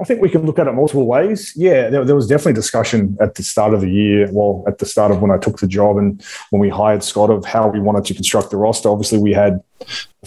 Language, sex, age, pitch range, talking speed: English, male, 20-39, 100-115 Hz, 280 wpm